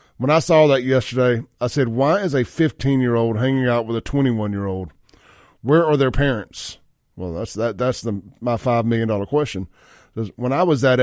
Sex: male